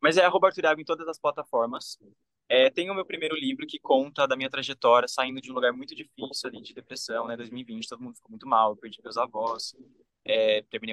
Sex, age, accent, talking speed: male, 20-39, Brazilian, 210 wpm